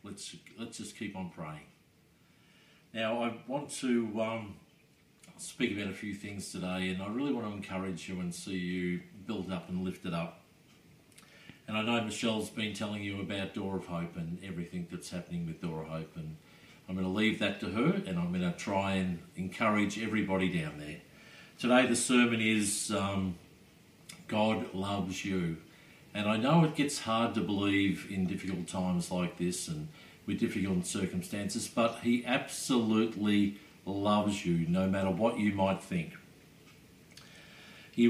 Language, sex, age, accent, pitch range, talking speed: English, male, 50-69, Australian, 95-120 Hz, 170 wpm